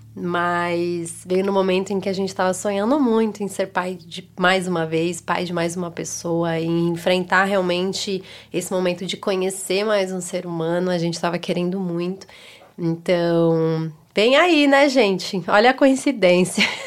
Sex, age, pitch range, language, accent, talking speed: female, 20-39, 175-200 Hz, Portuguese, Brazilian, 165 wpm